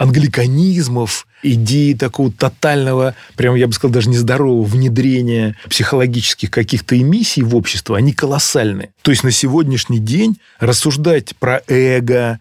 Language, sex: Russian, male